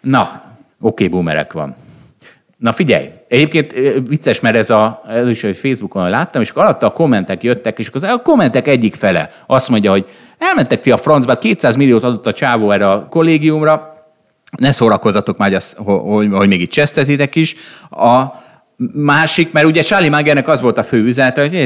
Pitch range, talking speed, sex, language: 100-145 Hz, 170 wpm, male, Hungarian